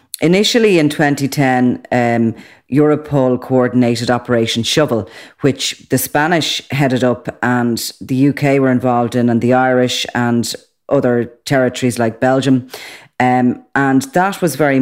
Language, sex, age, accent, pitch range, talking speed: English, female, 40-59, Irish, 125-140 Hz, 130 wpm